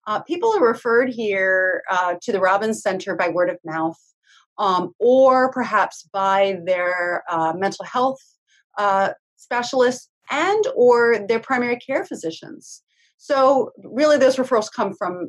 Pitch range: 195-260 Hz